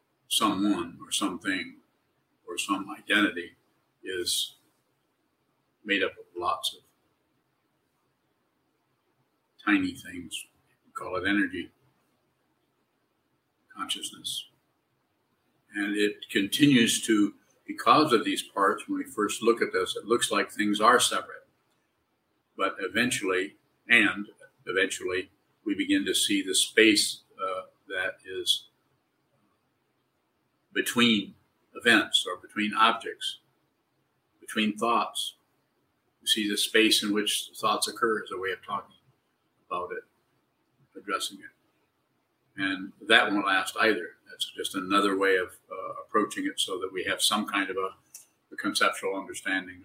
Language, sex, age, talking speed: English, male, 50-69, 120 wpm